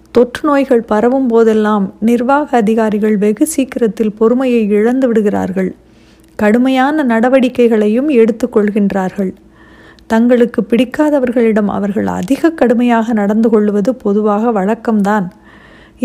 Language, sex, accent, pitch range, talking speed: Tamil, female, native, 210-255 Hz, 90 wpm